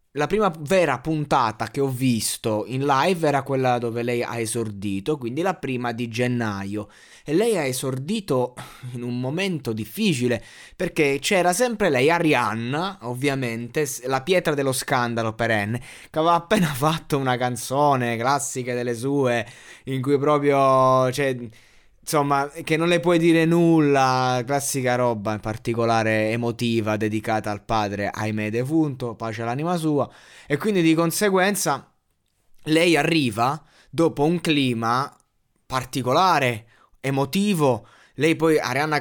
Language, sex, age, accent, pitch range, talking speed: Italian, male, 20-39, native, 120-155 Hz, 130 wpm